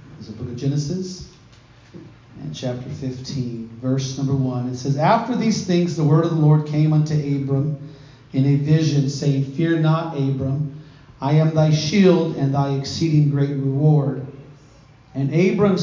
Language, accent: English, American